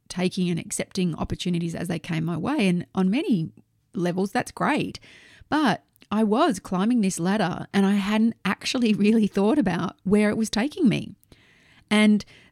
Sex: female